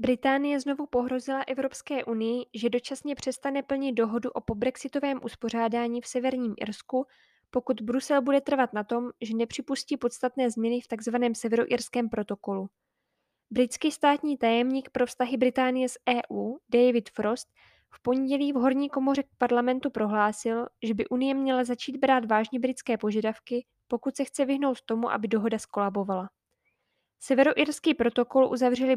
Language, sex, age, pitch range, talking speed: Czech, female, 10-29, 230-270 Hz, 140 wpm